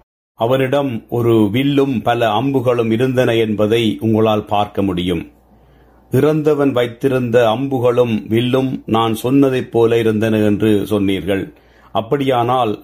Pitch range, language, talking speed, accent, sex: 110-130 Hz, Tamil, 100 wpm, native, male